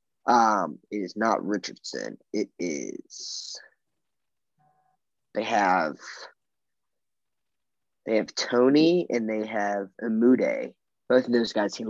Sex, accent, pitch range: male, American, 115-135 Hz